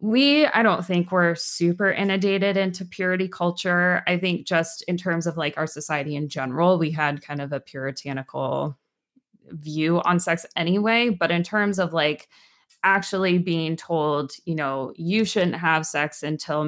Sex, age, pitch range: female, 20-39, 155-200 Hz